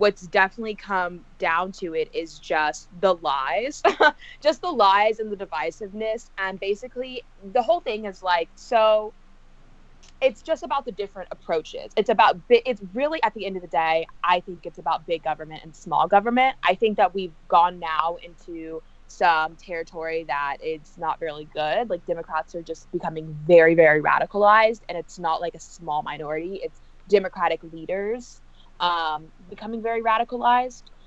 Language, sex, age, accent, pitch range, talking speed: English, female, 20-39, American, 165-215 Hz, 165 wpm